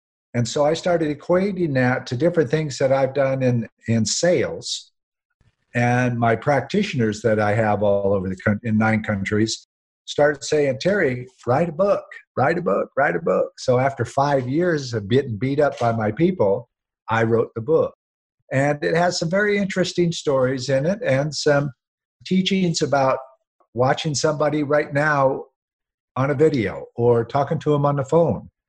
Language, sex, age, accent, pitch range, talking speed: English, male, 50-69, American, 115-160 Hz, 170 wpm